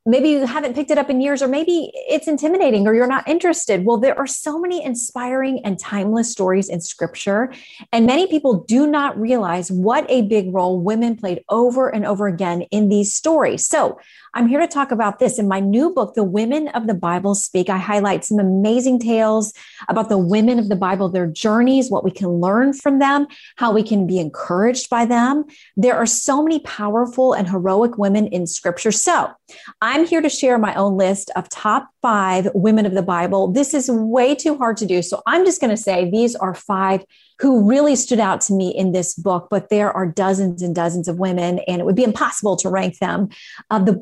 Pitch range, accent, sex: 195-255 Hz, American, female